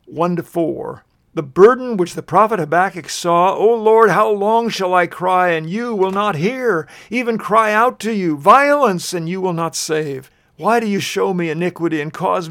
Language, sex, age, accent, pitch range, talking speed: English, male, 50-69, American, 165-205 Hz, 185 wpm